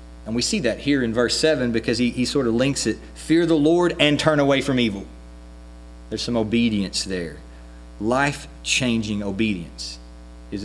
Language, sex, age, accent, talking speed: English, male, 40-59, American, 170 wpm